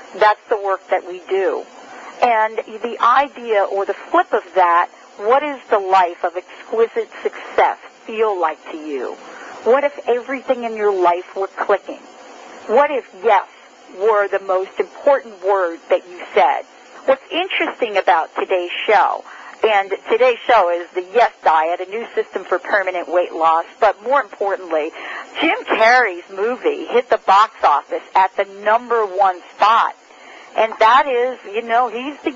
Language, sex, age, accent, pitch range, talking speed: English, female, 50-69, American, 190-260 Hz, 160 wpm